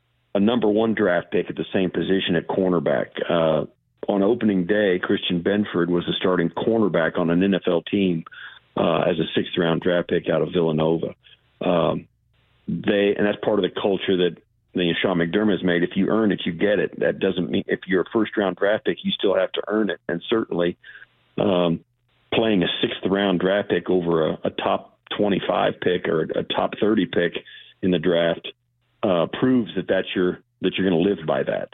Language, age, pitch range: English, 50-69, 90-110 Hz